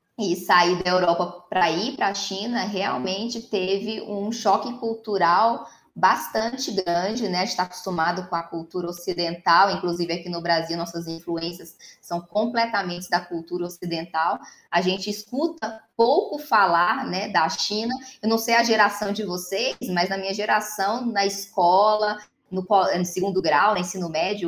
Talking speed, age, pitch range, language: 150 wpm, 20-39, 180-225 Hz, Portuguese